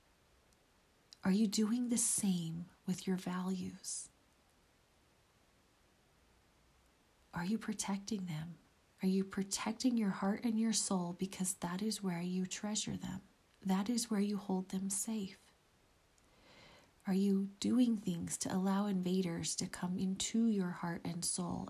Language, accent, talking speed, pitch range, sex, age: English, American, 135 wpm, 180-210 Hz, female, 40-59